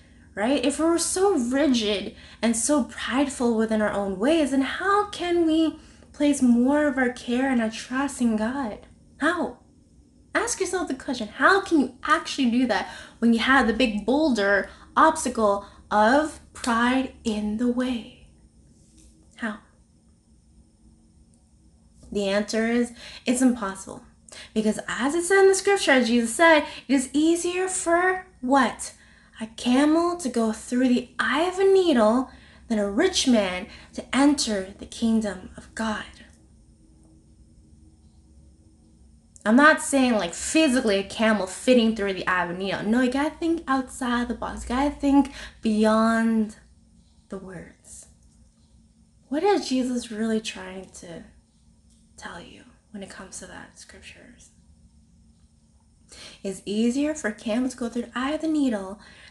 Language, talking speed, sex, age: English, 145 wpm, female, 20-39